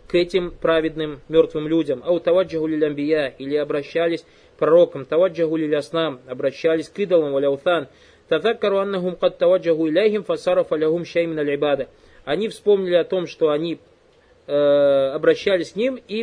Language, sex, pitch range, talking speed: Russian, male, 150-190 Hz, 140 wpm